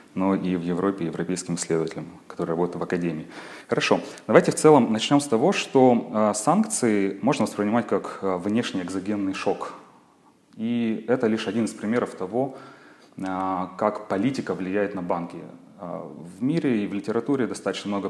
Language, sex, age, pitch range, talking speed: Russian, male, 30-49, 90-110 Hz, 145 wpm